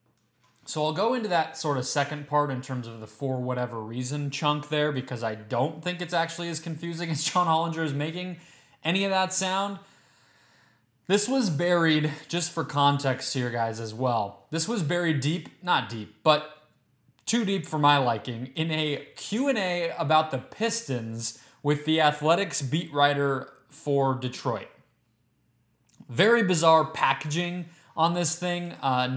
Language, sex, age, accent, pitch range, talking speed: English, male, 20-39, American, 130-170 Hz, 160 wpm